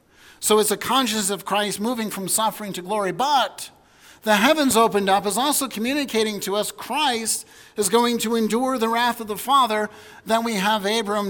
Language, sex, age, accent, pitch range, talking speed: English, male, 50-69, American, 175-220 Hz, 185 wpm